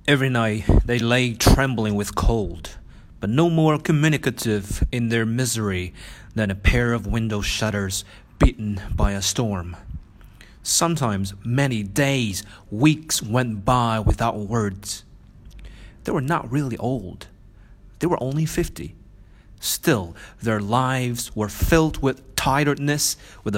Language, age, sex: Chinese, 30-49, male